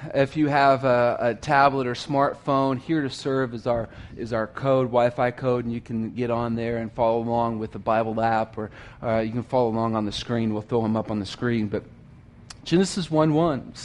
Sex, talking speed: male, 215 wpm